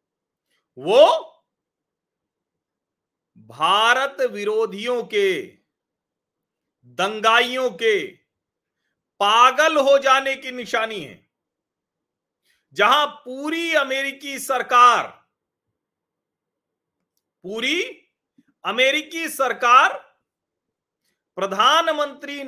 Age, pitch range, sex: 40-59, 225-315 Hz, male